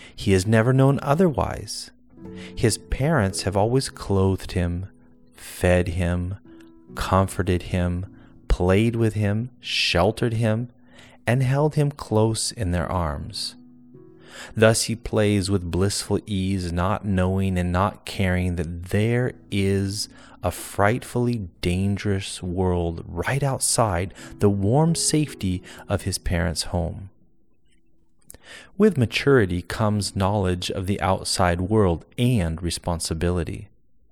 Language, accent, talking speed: English, American, 115 wpm